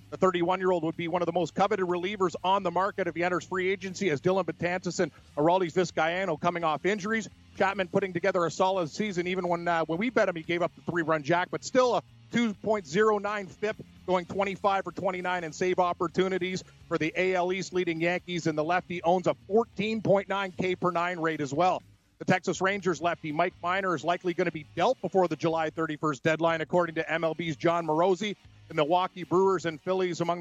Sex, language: male, English